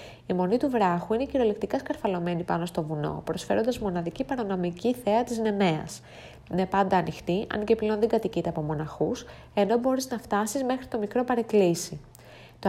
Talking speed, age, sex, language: 165 wpm, 20-39, female, Greek